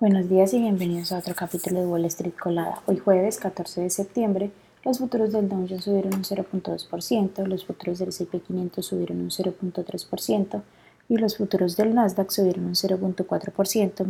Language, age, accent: Spanish, 20-39, Colombian